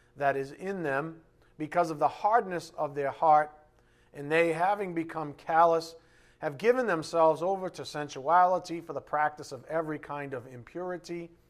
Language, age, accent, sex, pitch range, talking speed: English, 40-59, American, male, 135-175 Hz, 155 wpm